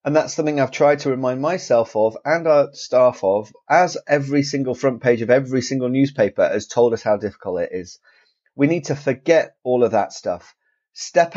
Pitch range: 125-160 Hz